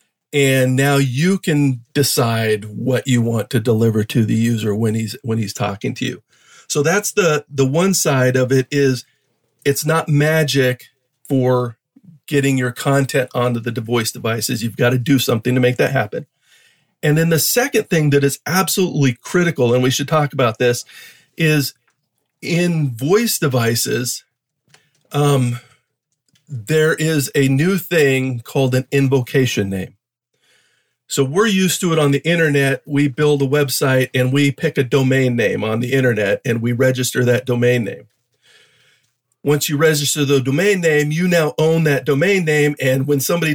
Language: English